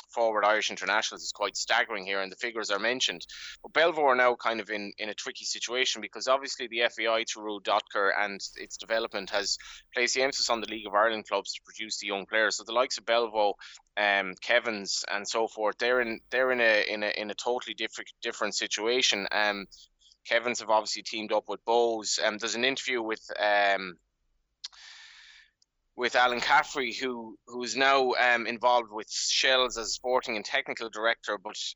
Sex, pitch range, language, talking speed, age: male, 105-125 Hz, English, 195 wpm, 20-39